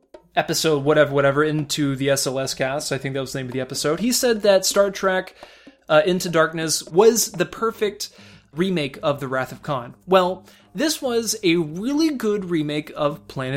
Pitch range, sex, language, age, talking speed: 155-225 Hz, male, English, 20-39, 185 wpm